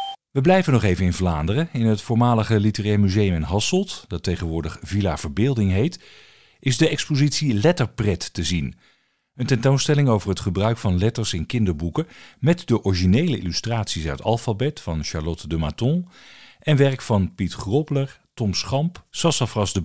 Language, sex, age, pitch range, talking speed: Dutch, male, 50-69, 90-130 Hz, 155 wpm